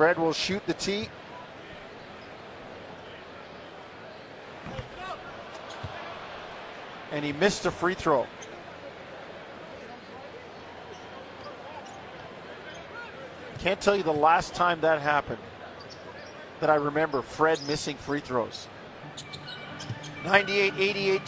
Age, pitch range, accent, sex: 50-69, 145-190 Hz, American, male